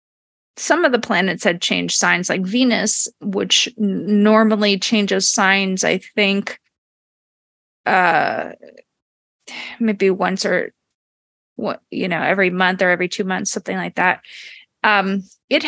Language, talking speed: English, 130 wpm